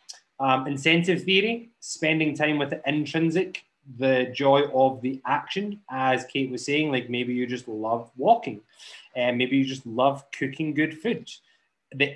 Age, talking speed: 20-39, 160 wpm